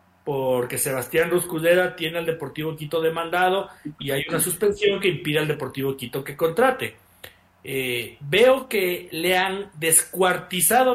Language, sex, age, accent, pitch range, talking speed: Spanish, male, 40-59, Mexican, 160-225 Hz, 135 wpm